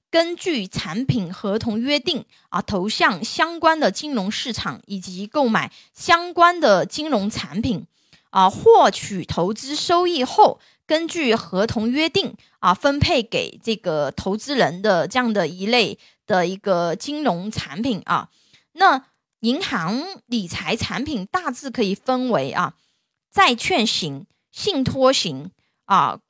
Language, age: Chinese, 20-39